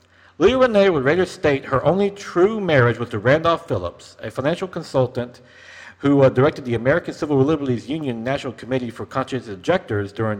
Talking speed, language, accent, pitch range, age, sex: 175 wpm, English, American, 110-160 Hz, 50-69, male